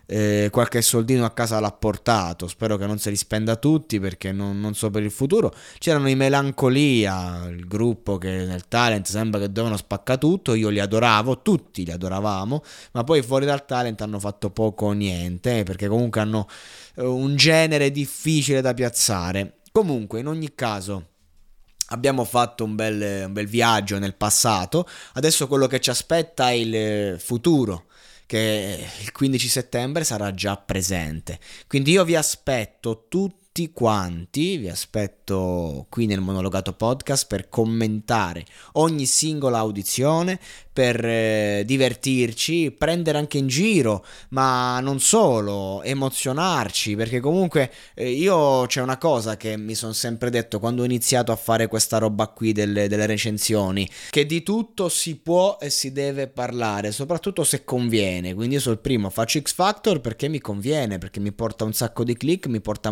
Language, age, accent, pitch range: Italian, 20-39, native, 105-135 Hz